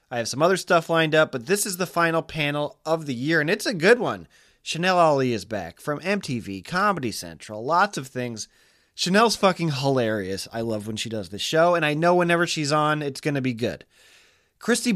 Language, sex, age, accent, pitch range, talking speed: English, male, 20-39, American, 120-185 Hz, 215 wpm